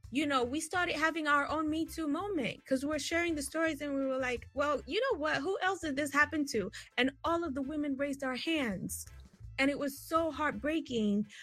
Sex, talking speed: female, 220 wpm